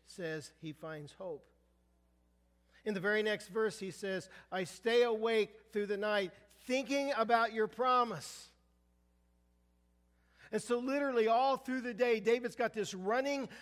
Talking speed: 140 wpm